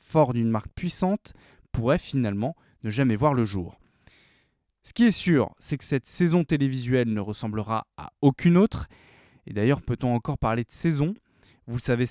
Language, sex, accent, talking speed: French, male, French, 175 wpm